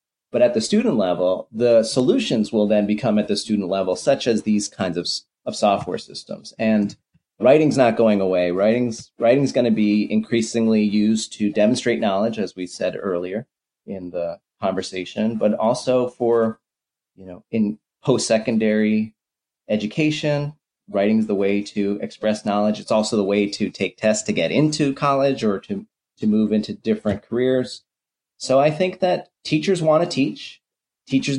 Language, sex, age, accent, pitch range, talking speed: English, male, 30-49, American, 105-135 Hz, 165 wpm